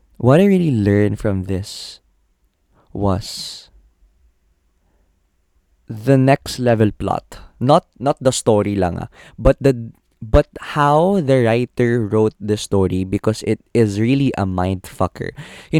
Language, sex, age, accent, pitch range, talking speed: Filipino, male, 20-39, native, 95-125 Hz, 120 wpm